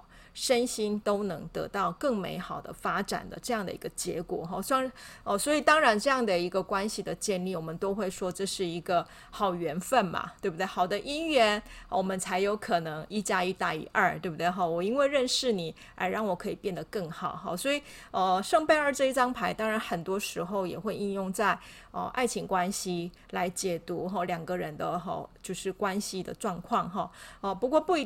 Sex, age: female, 30-49